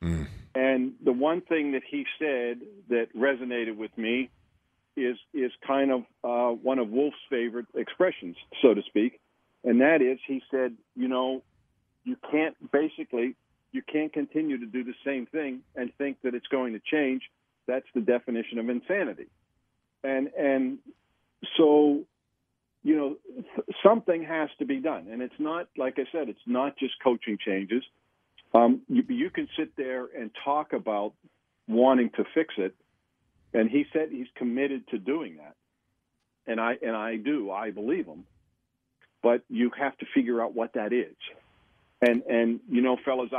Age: 50-69